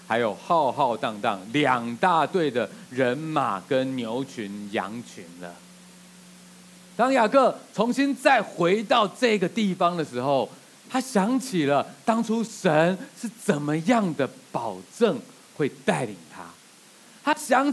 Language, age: Chinese, 30-49